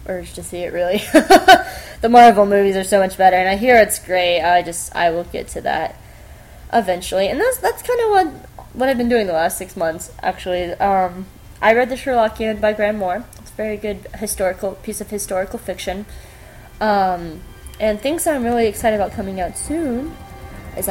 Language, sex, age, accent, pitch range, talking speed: English, female, 20-39, American, 180-230 Hz, 195 wpm